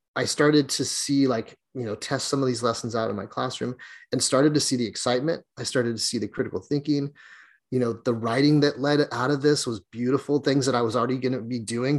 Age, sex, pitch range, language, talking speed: 30-49, male, 115-135 Hz, English, 245 wpm